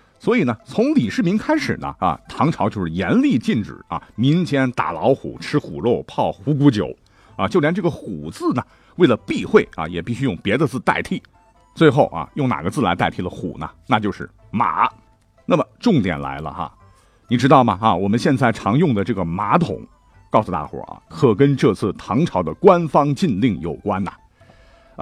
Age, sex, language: 50-69, male, Chinese